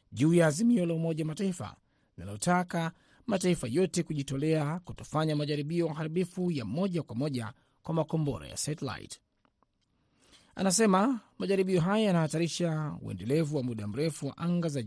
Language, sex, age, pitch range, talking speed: Swahili, male, 30-49, 130-170 Hz, 120 wpm